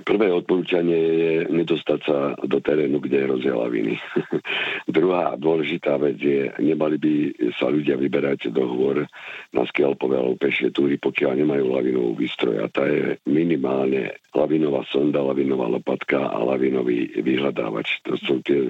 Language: Slovak